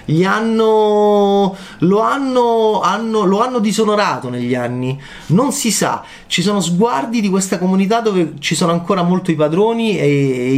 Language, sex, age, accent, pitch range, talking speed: Italian, male, 30-49, native, 145-210 Hz, 160 wpm